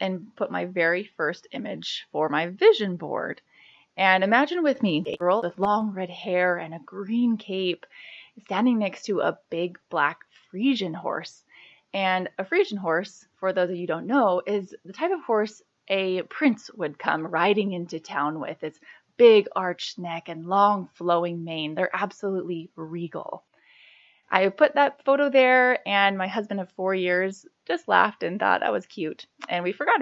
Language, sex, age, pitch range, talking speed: English, female, 20-39, 180-260 Hz, 175 wpm